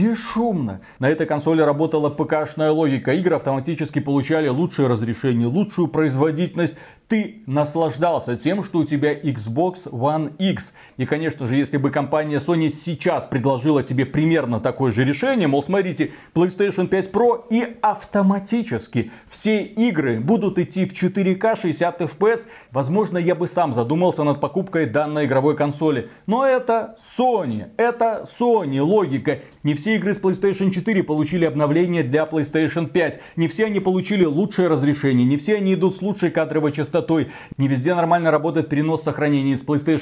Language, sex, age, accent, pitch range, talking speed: Russian, male, 30-49, native, 145-185 Hz, 155 wpm